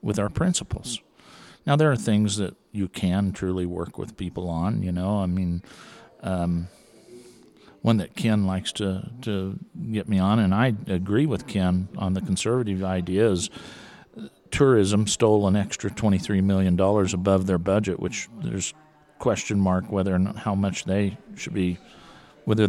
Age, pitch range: 50-69, 95-125 Hz